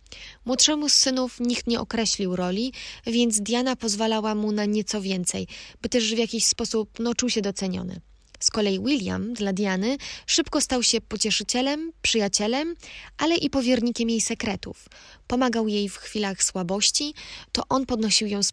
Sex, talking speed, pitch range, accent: female, 150 wpm, 200-240 Hz, native